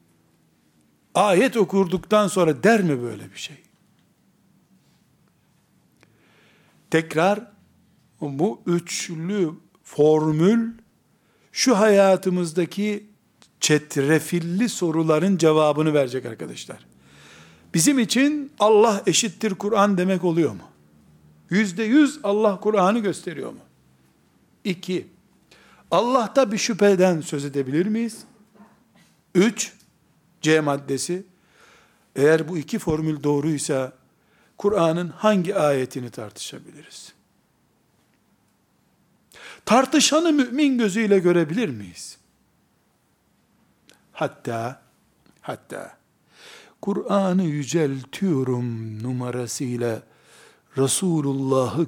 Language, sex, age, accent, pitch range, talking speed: Turkish, male, 60-79, native, 135-205 Hz, 75 wpm